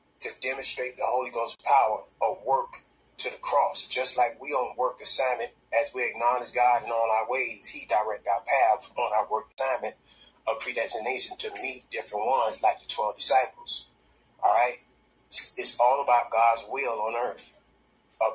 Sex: male